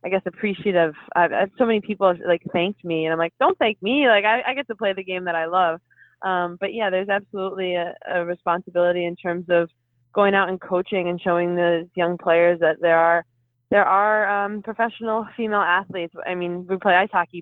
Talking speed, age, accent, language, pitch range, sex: 215 wpm, 20-39, American, English, 170-190 Hz, female